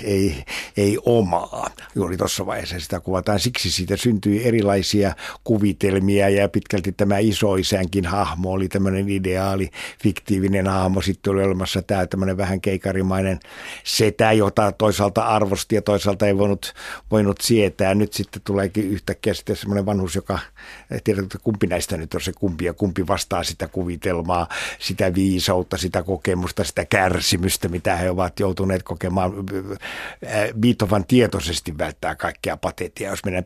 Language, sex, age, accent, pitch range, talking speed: Finnish, male, 60-79, native, 95-105 Hz, 140 wpm